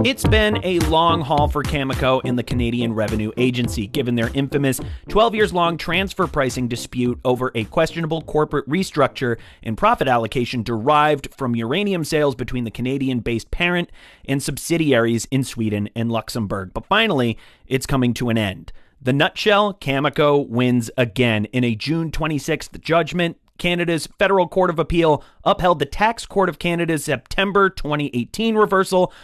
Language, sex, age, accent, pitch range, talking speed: English, male, 30-49, American, 125-175 Hz, 155 wpm